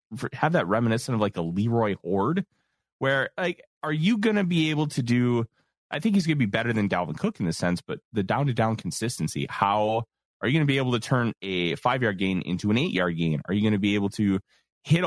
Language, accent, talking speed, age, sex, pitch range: English, American, 250 wpm, 30-49, male, 100-145 Hz